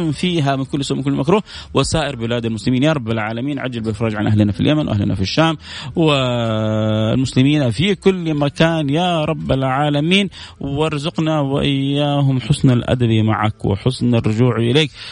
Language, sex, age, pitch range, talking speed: Arabic, male, 30-49, 105-140 Hz, 145 wpm